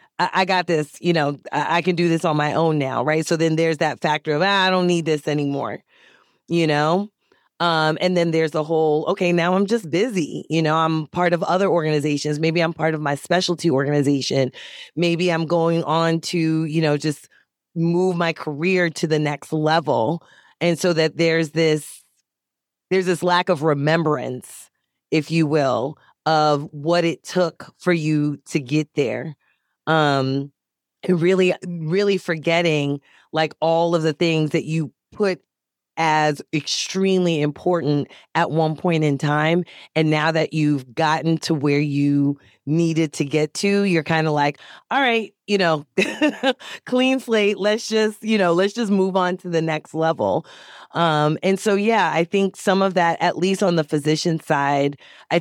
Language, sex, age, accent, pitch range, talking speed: English, female, 30-49, American, 150-180 Hz, 175 wpm